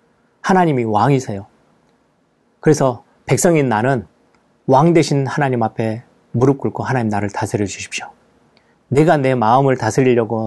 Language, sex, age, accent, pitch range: Korean, male, 30-49, native, 110-140 Hz